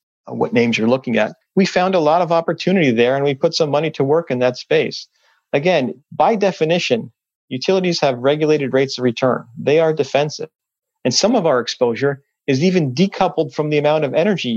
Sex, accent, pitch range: male, American, 120-160 Hz